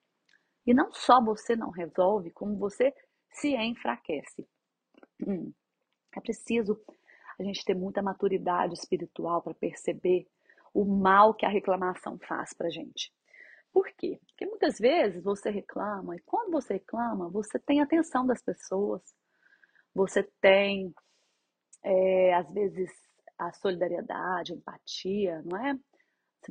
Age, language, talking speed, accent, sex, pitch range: 30-49, Portuguese, 130 wpm, Brazilian, female, 195-250 Hz